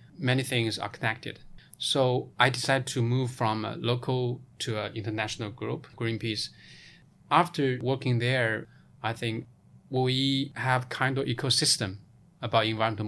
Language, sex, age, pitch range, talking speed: English, male, 20-39, 115-135 Hz, 135 wpm